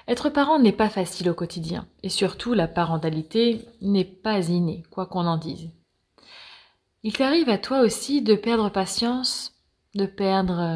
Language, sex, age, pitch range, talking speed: French, female, 20-39, 165-230 Hz, 155 wpm